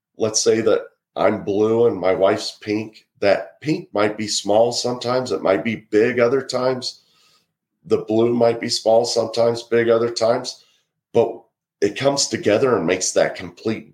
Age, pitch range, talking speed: 40-59, 105-135 Hz, 165 wpm